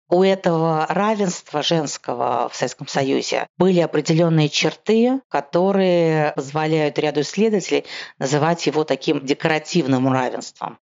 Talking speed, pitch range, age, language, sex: 105 wpm, 135-165 Hz, 40-59, Russian, female